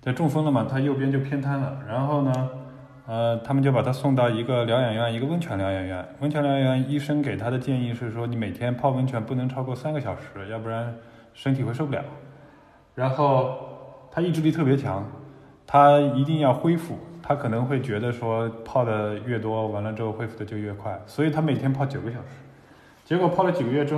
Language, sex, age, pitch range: Chinese, male, 20-39, 110-145 Hz